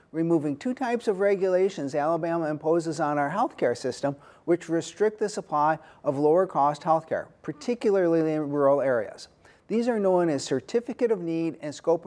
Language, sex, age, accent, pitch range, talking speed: English, male, 40-59, American, 150-190 Hz, 170 wpm